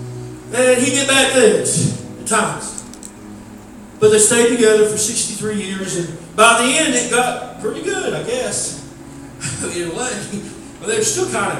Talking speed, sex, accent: 165 wpm, male, American